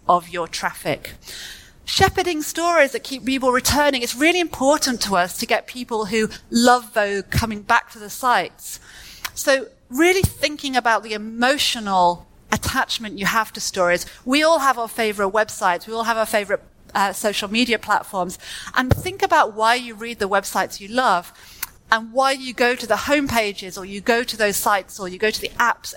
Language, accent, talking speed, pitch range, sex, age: Croatian, British, 185 wpm, 200-255 Hz, female, 40-59